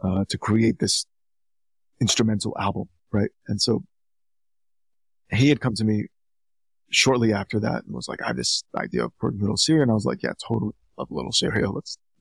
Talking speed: 180 wpm